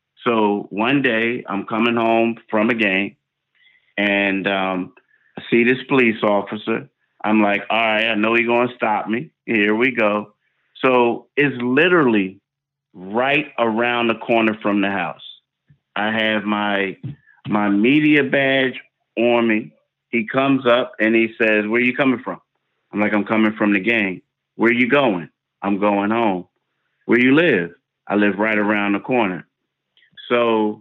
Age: 30-49